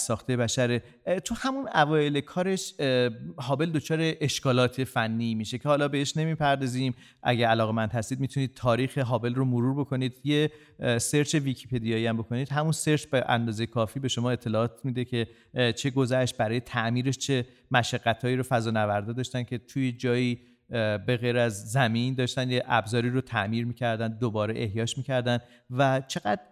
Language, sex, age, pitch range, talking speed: Persian, male, 40-59, 115-140 Hz, 150 wpm